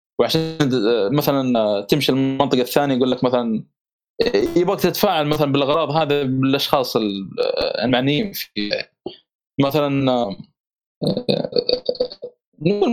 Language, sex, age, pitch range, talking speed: Arabic, male, 20-39, 125-160 Hz, 85 wpm